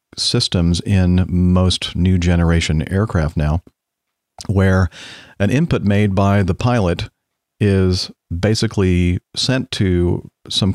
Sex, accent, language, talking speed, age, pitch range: male, American, English, 105 wpm, 50-69, 85-105 Hz